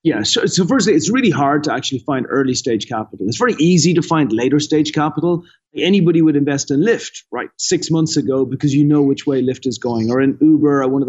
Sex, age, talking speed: male, 30-49, 240 wpm